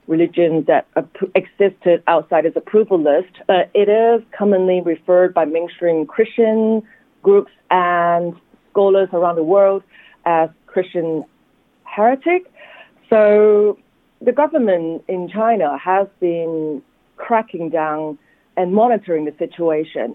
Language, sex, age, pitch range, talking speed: English, female, 40-59, 165-210 Hz, 110 wpm